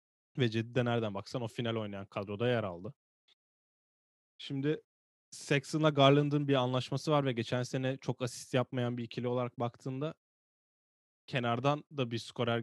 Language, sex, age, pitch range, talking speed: Turkish, male, 10-29, 110-135 Hz, 145 wpm